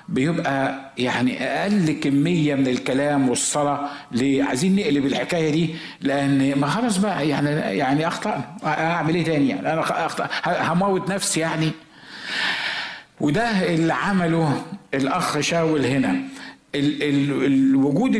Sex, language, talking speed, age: male, Arabic, 110 wpm, 50-69